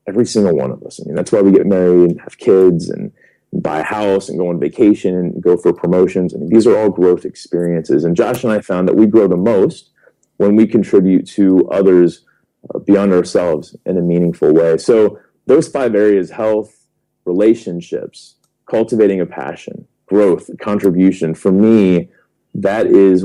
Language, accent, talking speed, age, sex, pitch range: English, American, 185 wpm, 30-49, male, 90-110 Hz